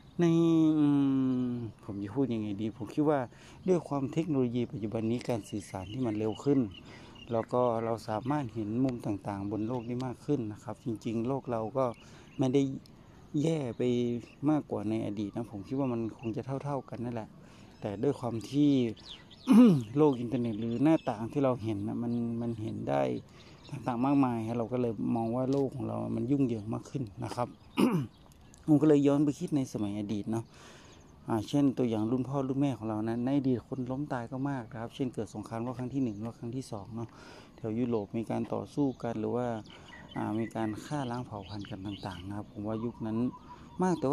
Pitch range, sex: 110-135 Hz, male